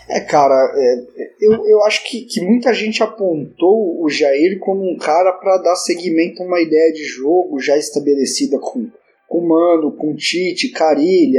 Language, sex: Portuguese, male